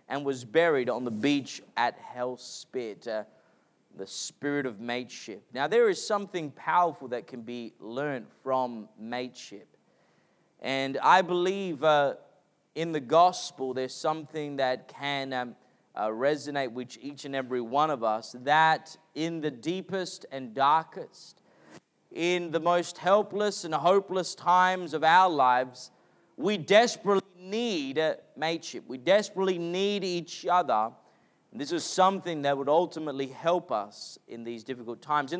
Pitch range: 140-205 Hz